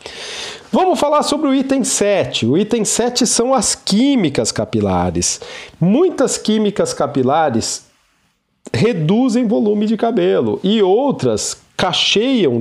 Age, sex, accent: 50-69, male, Brazilian